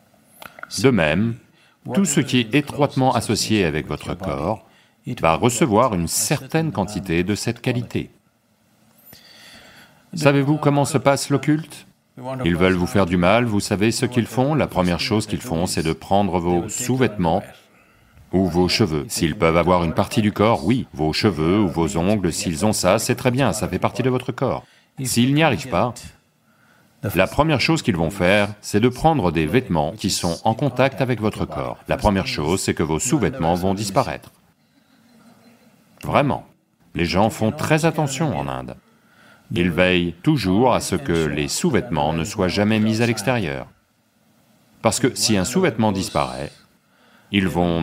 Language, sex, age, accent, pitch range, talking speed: English, male, 40-59, French, 90-130 Hz, 170 wpm